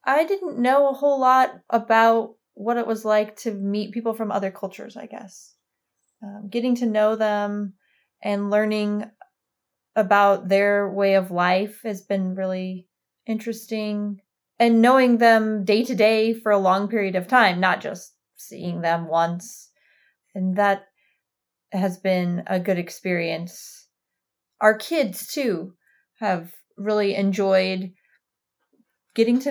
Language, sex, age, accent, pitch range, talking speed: English, female, 30-49, American, 185-225 Hz, 135 wpm